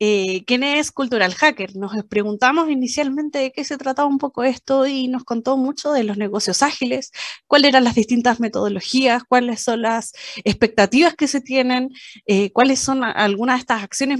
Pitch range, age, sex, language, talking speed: 220-290 Hz, 20-39, female, Spanish, 175 wpm